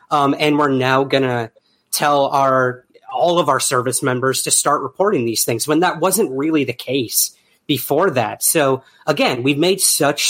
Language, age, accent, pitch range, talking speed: English, 30-49, American, 125-155 Hz, 180 wpm